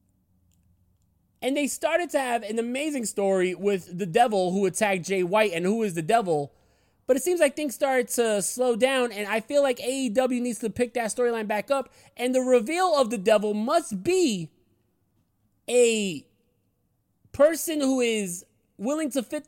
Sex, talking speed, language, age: male, 175 wpm, English, 30-49